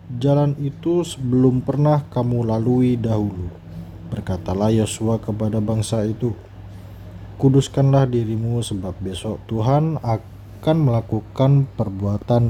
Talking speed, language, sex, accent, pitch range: 95 wpm, Indonesian, male, native, 100-125 Hz